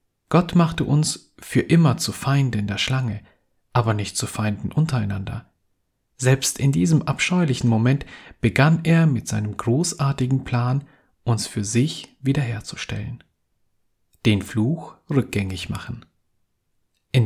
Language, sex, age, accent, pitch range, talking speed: German, male, 40-59, German, 105-145 Hz, 120 wpm